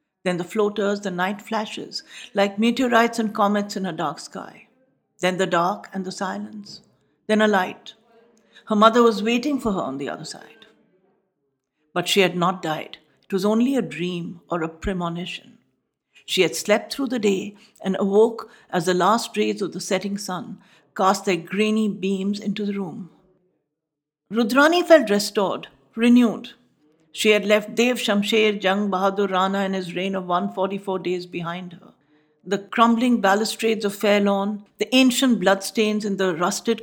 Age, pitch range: 60-79, 185-225 Hz